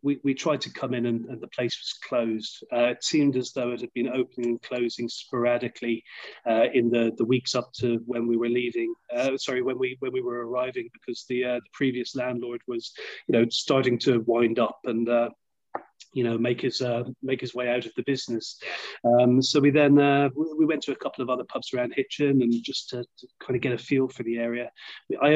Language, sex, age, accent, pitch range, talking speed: English, male, 30-49, British, 120-140 Hz, 230 wpm